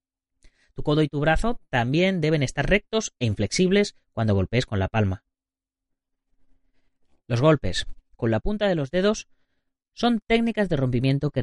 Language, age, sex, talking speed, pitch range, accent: Spanish, 30-49, female, 150 wpm, 100-155 Hz, Spanish